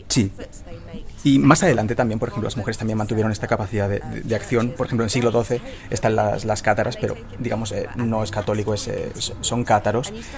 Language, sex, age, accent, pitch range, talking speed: Spanish, male, 30-49, Spanish, 110-125 Hz, 200 wpm